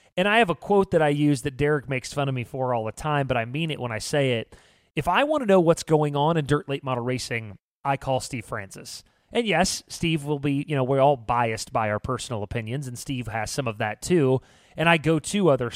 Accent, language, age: American, English, 30-49